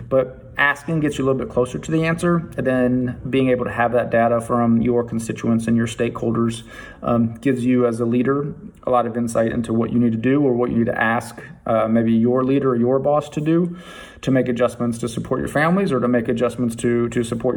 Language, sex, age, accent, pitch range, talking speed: English, male, 30-49, American, 115-125 Hz, 240 wpm